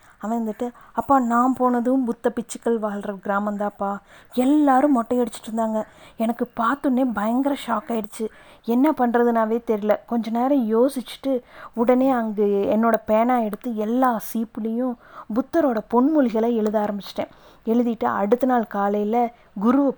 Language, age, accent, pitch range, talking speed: Tamil, 30-49, native, 210-245 Hz, 115 wpm